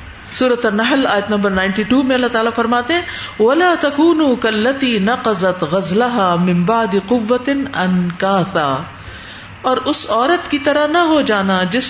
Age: 50-69